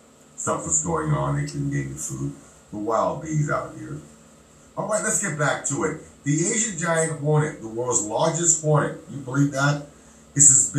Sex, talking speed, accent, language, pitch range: male, 185 wpm, American, English, 105-160 Hz